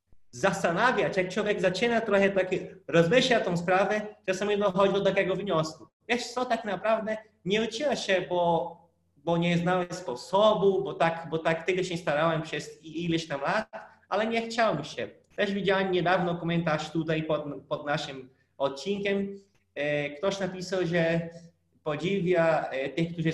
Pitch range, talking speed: 150-185 Hz, 150 wpm